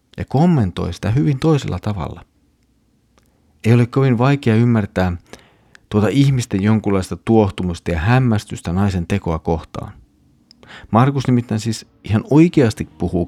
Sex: male